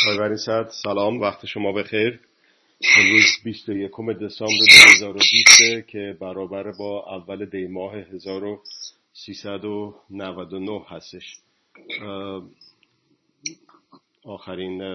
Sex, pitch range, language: male, 95-105 Hz, Persian